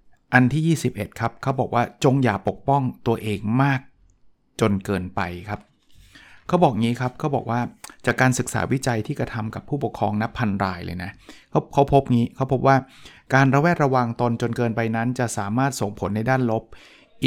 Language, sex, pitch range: Thai, male, 110-140 Hz